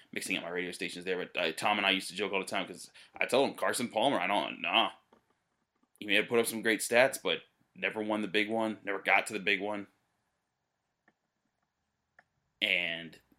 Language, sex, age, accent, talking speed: English, male, 20-39, American, 215 wpm